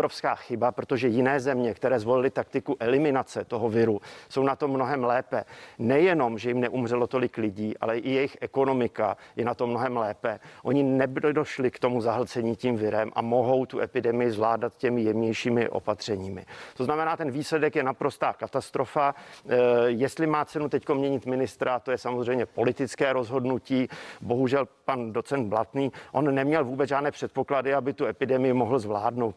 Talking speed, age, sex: 160 wpm, 50-69, male